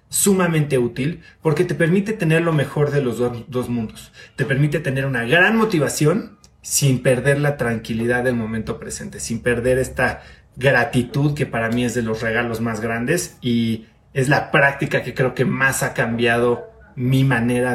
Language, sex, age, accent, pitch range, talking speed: Spanish, male, 30-49, Mexican, 120-155 Hz, 170 wpm